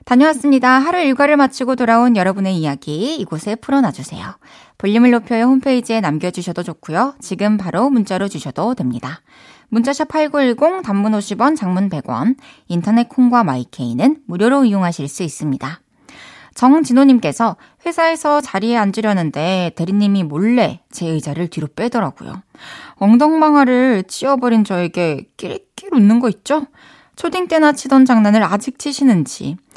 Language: Korean